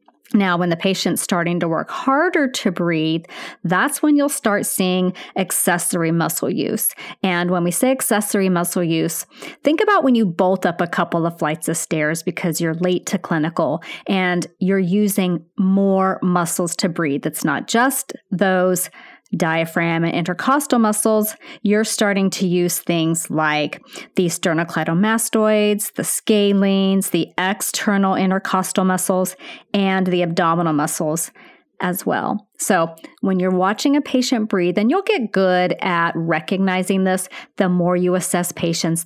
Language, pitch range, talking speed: English, 170-205 Hz, 145 wpm